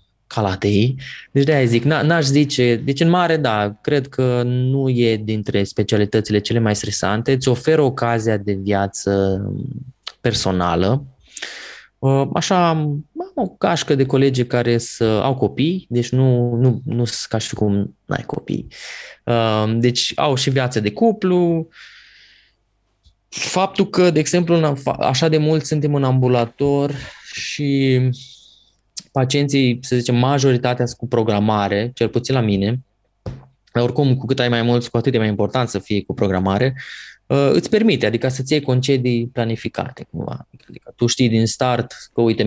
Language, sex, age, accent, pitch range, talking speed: Romanian, male, 20-39, native, 110-140 Hz, 145 wpm